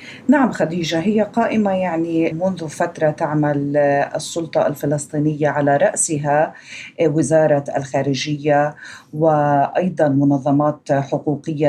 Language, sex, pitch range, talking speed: Arabic, female, 145-175 Hz, 85 wpm